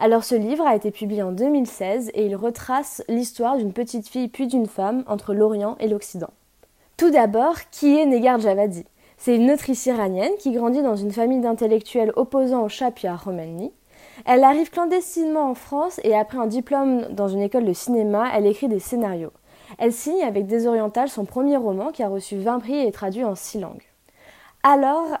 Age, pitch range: 20-39, 210-255 Hz